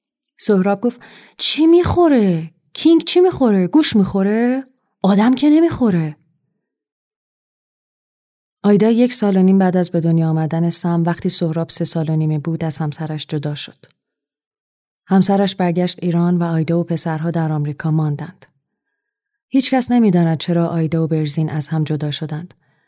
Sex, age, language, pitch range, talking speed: female, 30-49, Persian, 160-195 Hz, 140 wpm